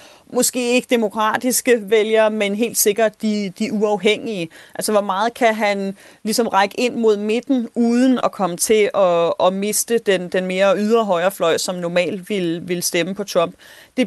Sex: female